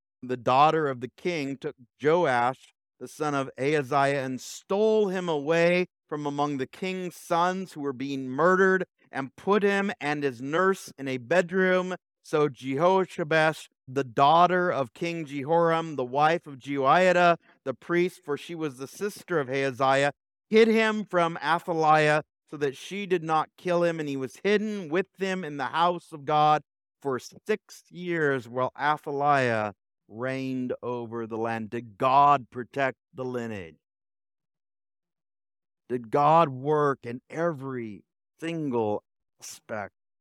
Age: 50-69